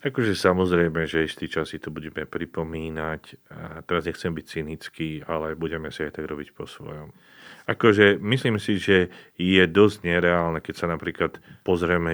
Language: Slovak